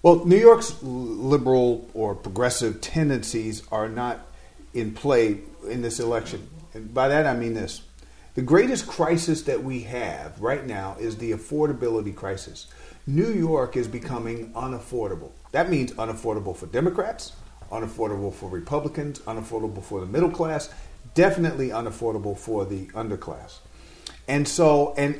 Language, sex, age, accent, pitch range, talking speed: English, male, 40-59, American, 115-160 Hz, 140 wpm